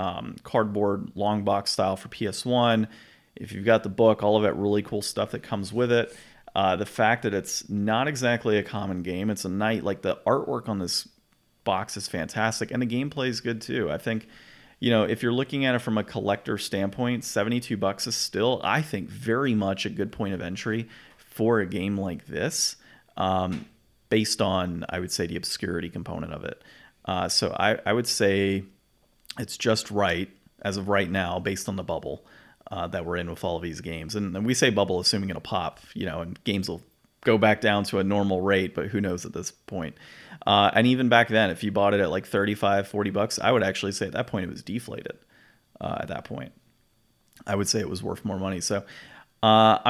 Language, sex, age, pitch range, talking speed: English, male, 30-49, 95-115 Hz, 220 wpm